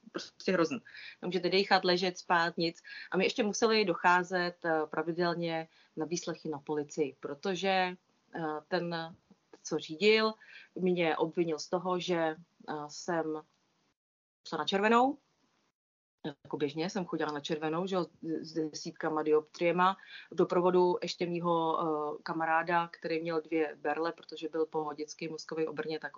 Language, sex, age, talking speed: Czech, female, 30-49, 130 wpm